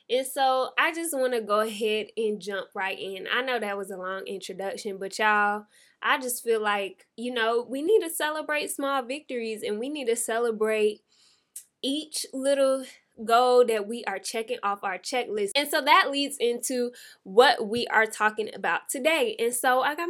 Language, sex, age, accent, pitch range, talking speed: English, female, 10-29, American, 220-285 Hz, 190 wpm